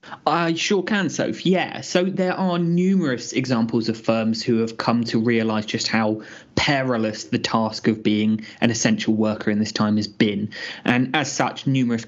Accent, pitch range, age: British, 110-130 Hz, 20-39